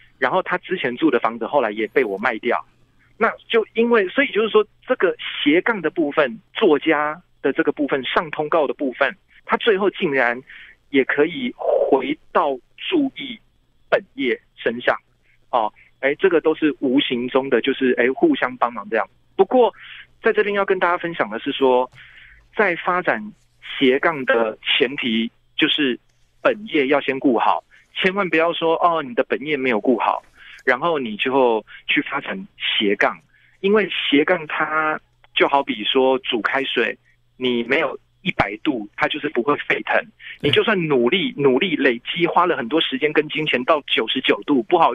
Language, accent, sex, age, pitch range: Chinese, native, male, 30-49, 135-215 Hz